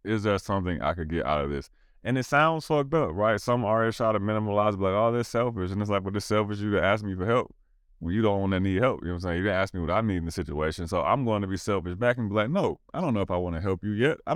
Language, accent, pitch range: English, American, 85-115 Hz